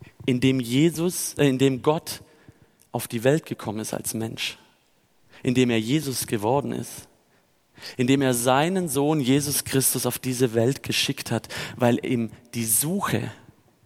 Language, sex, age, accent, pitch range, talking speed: German, male, 40-59, German, 120-160 Hz, 150 wpm